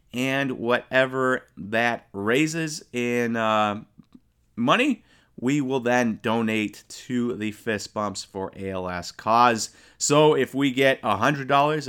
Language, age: English, 30-49